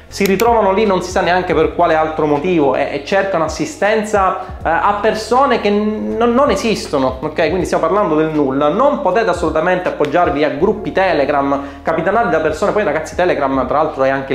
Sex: male